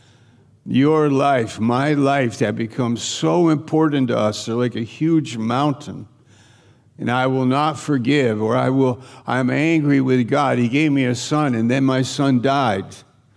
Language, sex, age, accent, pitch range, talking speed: English, male, 60-79, American, 110-135 Hz, 165 wpm